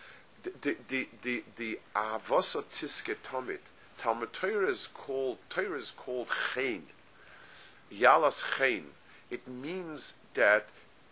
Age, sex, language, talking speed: 50-69, male, English, 85 wpm